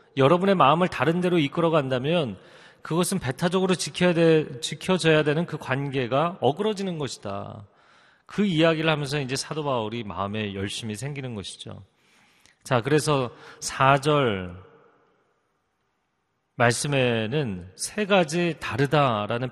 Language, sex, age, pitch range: Korean, male, 40-59, 120-165 Hz